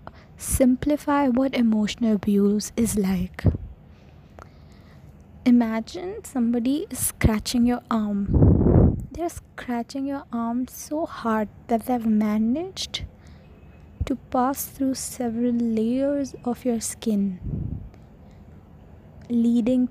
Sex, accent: female, Indian